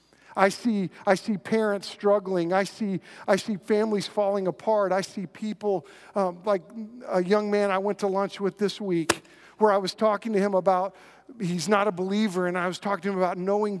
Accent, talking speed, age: American, 205 wpm, 50-69